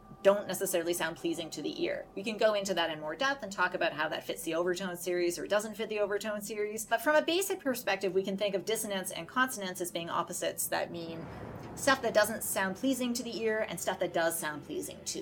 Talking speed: 245 wpm